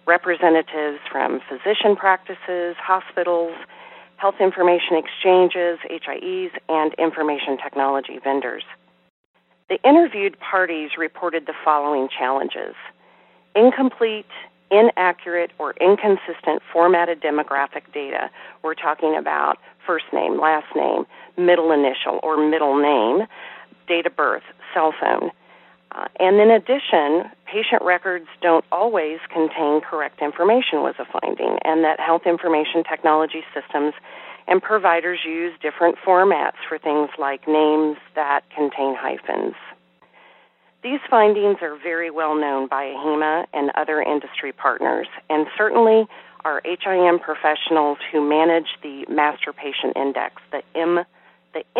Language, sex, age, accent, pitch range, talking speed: English, female, 40-59, American, 150-185 Hz, 120 wpm